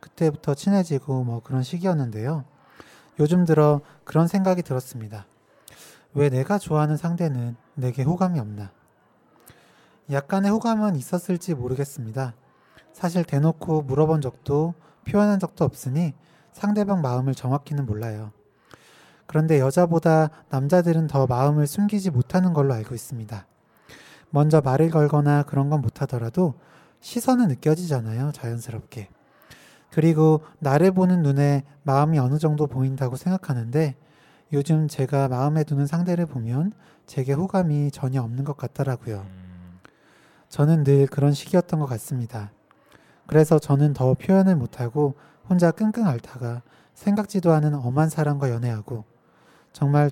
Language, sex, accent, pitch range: Korean, male, native, 130-165 Hz